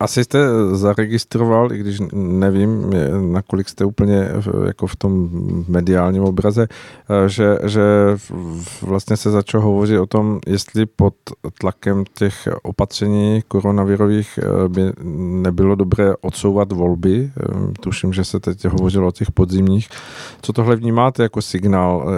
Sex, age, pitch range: male, 50-69, 95-105 Hz